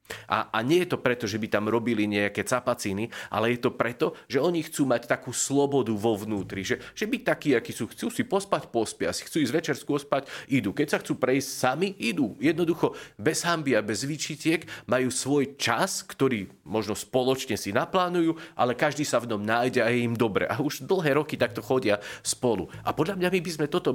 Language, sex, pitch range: Slovak, male, 110-150 Hz